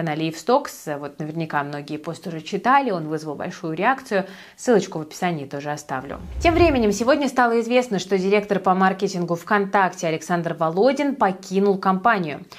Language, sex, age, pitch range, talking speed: Russian, female, 20-39, 175-230 Hz, 145 wpm